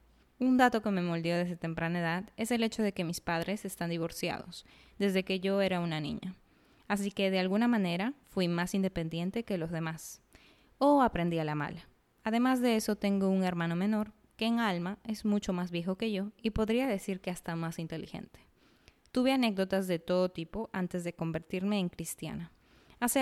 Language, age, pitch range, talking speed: Spanish, 20-39, 170-215 Hz, 190 wpm